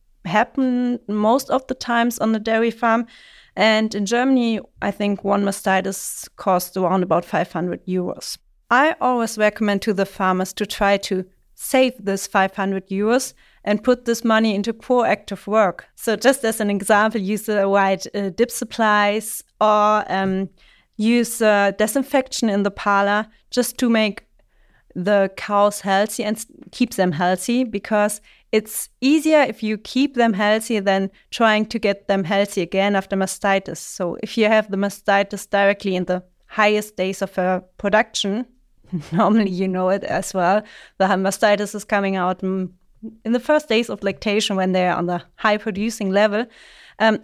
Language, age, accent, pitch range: English, 30-49, German, 195-230 Hz